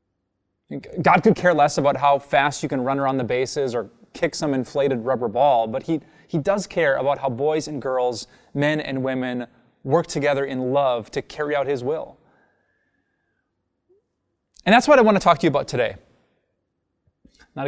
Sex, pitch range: male, 135-180 Hz